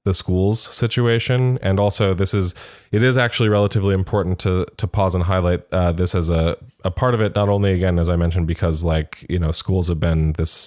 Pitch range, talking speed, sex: 85-100 Hz, 220 wpm, male